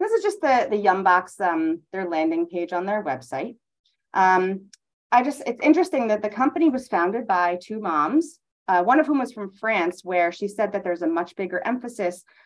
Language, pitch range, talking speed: English, 170-255 Hz, 200 wpm